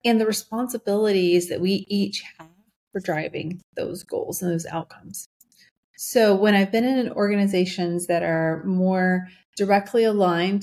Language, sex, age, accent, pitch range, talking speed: English, female, 30-49, American, 170-210 Hz, 140 wpm